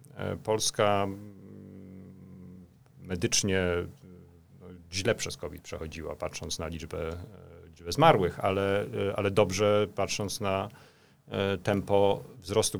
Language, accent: Polish, native